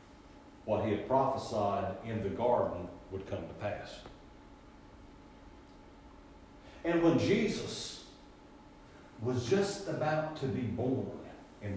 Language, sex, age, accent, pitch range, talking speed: English, male, 60-79, American, 110-150 Hz, 105 wpm